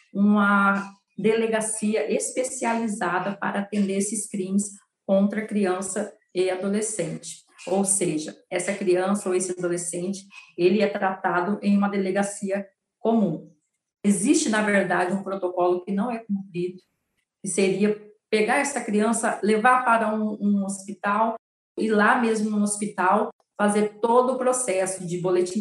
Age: 40-59